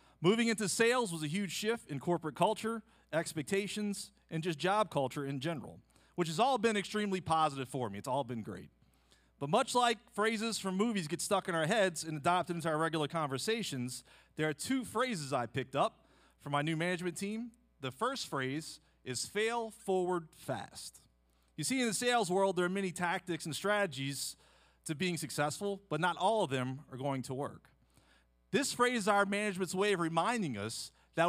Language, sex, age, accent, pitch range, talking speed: English, male, 40-59, American, 140-210 Hz, 190 wpm